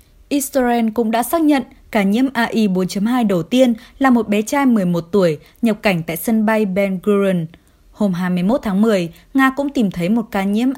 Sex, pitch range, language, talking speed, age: female, 180-240 Hz, Vietnamese, 190 wpm, 20-39